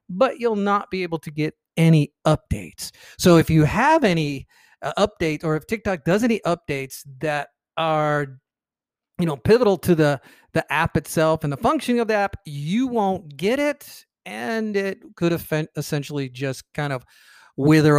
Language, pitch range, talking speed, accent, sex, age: English, 145-195 Hz, 165 wpm, American, male, 40-59